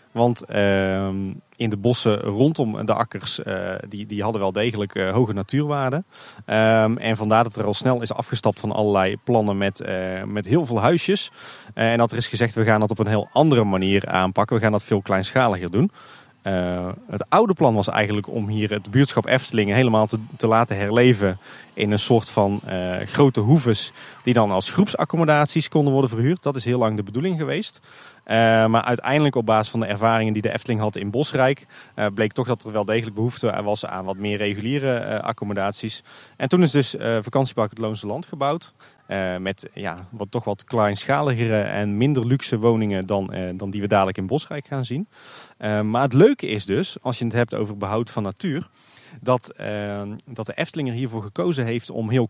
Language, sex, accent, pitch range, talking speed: Dutch, male, Dutch, 105-130 Hz, 200 wpm